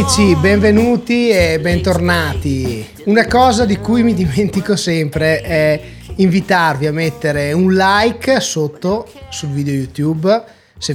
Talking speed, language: 115 wpm, Italian